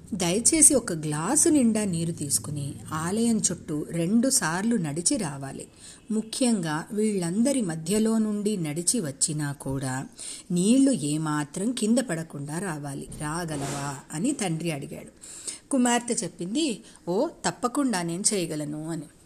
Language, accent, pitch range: Telugu, native, 165-220 Hz